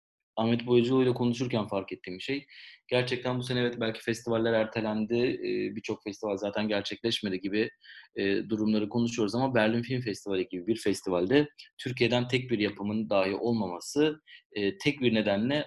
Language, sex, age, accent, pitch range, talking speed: Turkish, male, 30-49, native, 100-120 Hz, 145 wpm